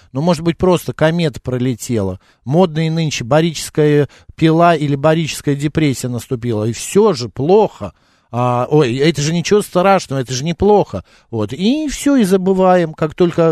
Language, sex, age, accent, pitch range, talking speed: Russian, male, 50-69, native, 120-160 Hz, 155 wpm